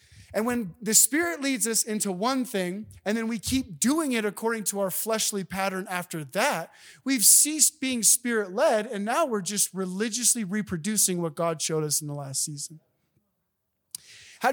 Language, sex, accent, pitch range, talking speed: English, male, American, 185-250 Hz, 170 wpm